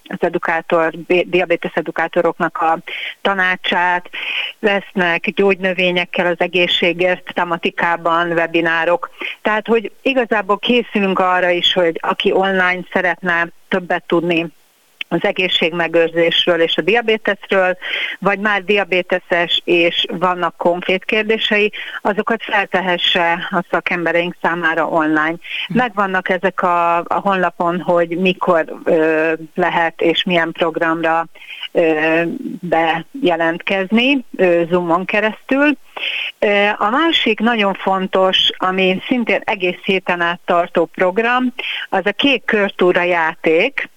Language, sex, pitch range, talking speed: Hungarian, female, 175-200 Hz, 100 wpm